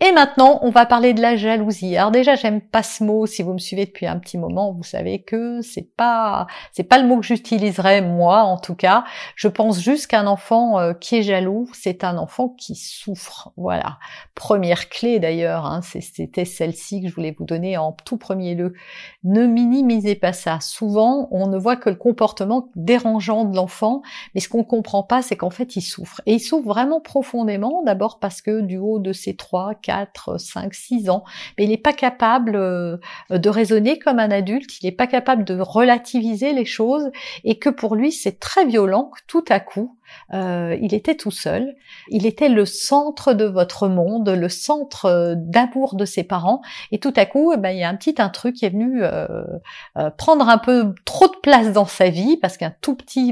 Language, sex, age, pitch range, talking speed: French, female, 50-69, 190-245 Hz, 210 wpm